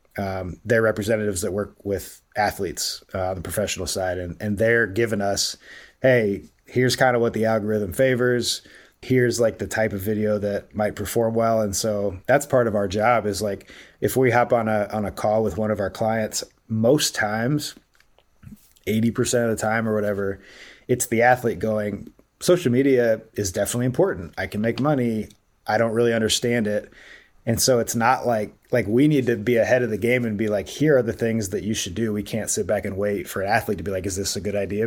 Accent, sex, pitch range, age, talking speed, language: American, male, 100-115 Hz, 30-49, 215 wpm, English